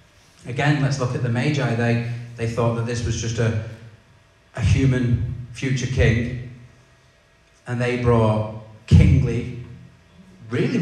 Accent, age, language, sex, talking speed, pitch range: British, 30-49, English, male, 130 wpm, 110-125 Hz